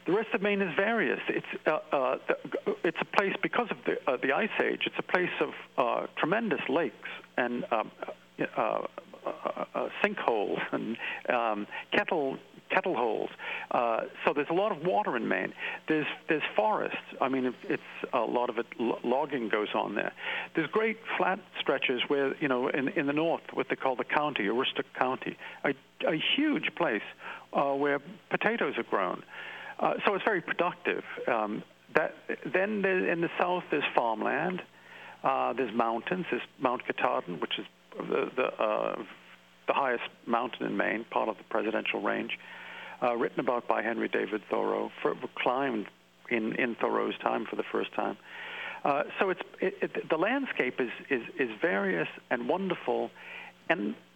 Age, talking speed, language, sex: 50-69, 170 wpm, English, male